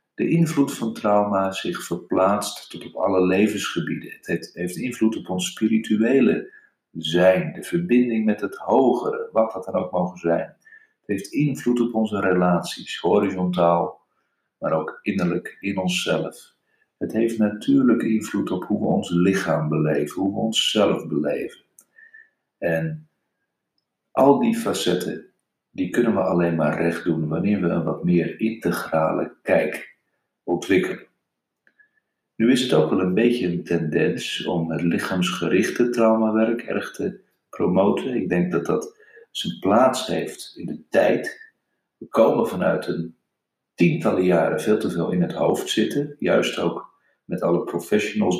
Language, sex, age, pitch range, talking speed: Dutch, male, 50-69, 90-120 Hz, 145 wpm